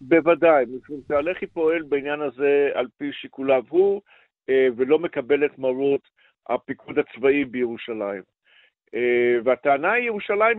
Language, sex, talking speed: Hebrew, male, 110 wpm